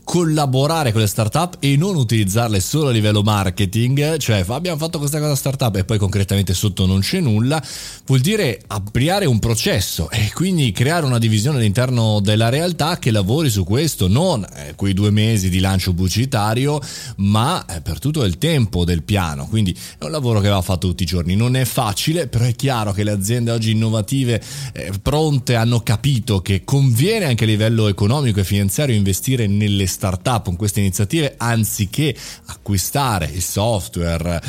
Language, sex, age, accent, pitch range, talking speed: Italian, male, 30-49, native, 100-140 Hz, 170 wpm